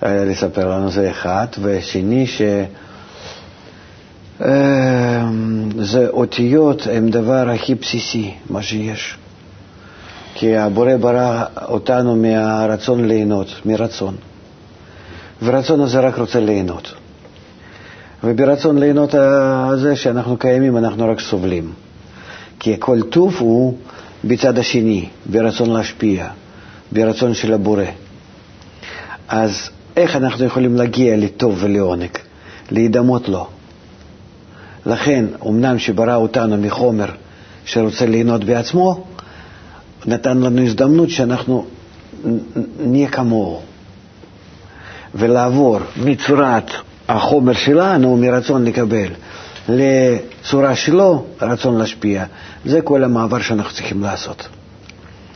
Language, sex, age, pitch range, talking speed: Hebrew, male, 50-69, 100-125 Hz, 90 wpm